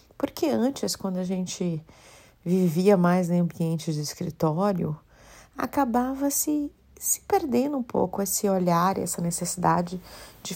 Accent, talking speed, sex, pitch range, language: Brazilian, 125 wpm, female, 185-245 Hz, Portuguese